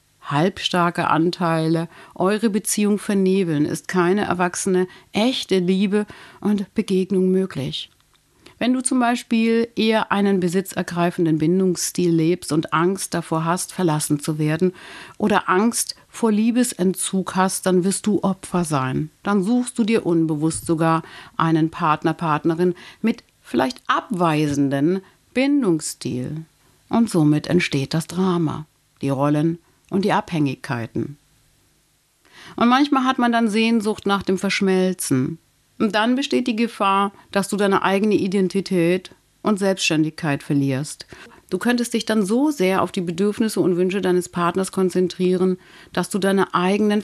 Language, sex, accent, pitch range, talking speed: German, female, German, 165-200 Hz, 130 wpm